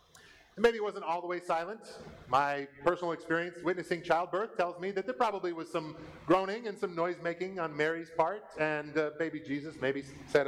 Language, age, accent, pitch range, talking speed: English, 30-49, American, 150-200 Hz, 190 wpm